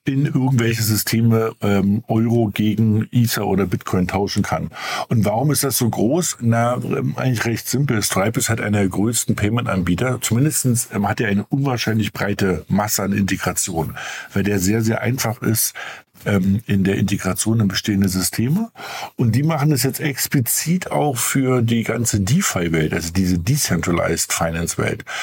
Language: German